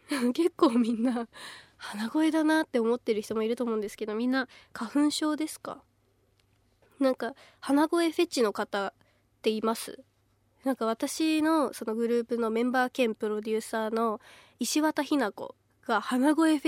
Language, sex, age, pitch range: Japanese, female, 20-39, 230-310 Hz